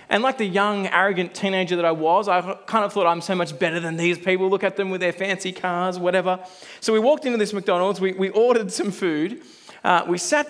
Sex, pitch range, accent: male, 185-230 Hz, Australian